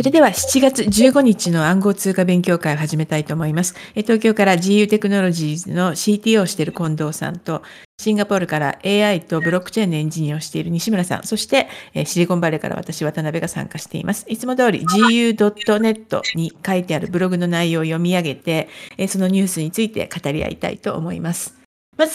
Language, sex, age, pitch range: Japanese, female, 50-69, 165-215 Hz